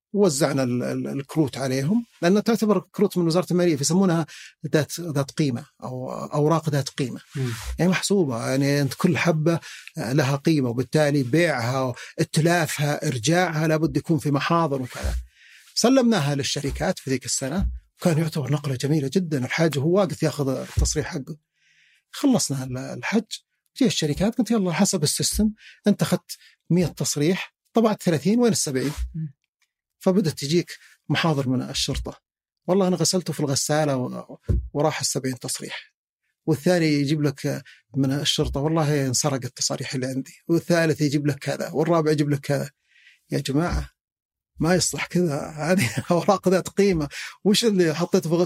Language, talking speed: Arabic, 140 wpm